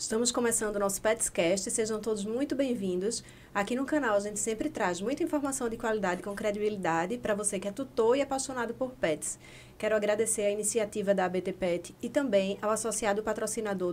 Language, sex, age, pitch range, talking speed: Portuguese, female, 20-39, 200-245 Hz, 185 wpm